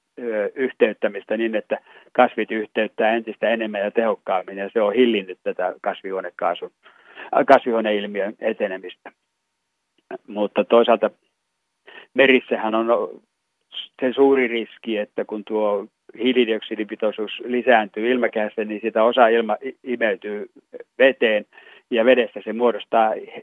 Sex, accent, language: male, native, Finnish